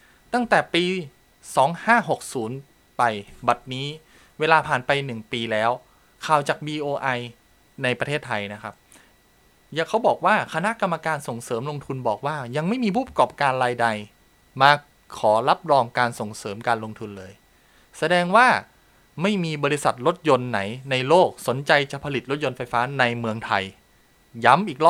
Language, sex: Thai, male